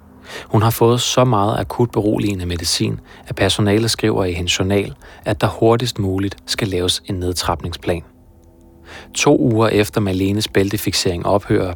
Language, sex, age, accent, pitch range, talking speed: Danish, male, 30-49, native, 90-110 Hz, 145 wpm